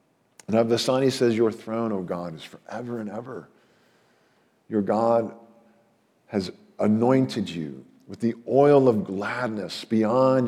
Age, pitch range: 50-69, 100-120 Hz